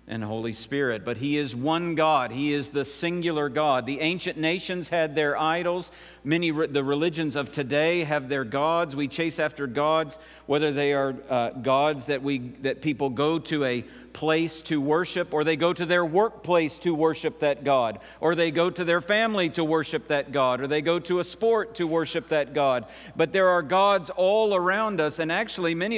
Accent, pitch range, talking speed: American, 135-175 Hz, 200 wpm